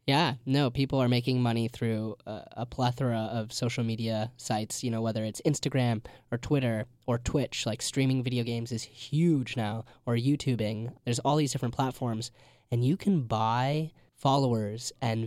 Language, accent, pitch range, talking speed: English, American, 115-135 Hz, 170 wpm